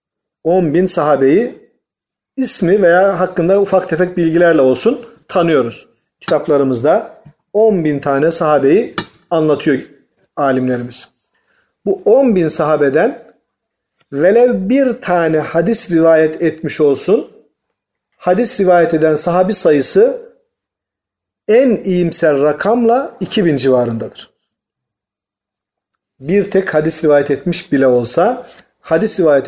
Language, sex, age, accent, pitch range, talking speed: Turkish, male, 40-59, native, 140-195 Hz, 90 wpm